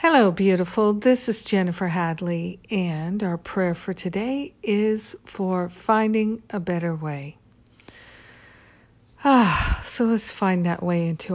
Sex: female